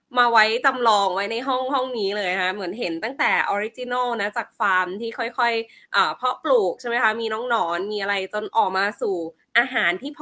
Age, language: 20-39, Thai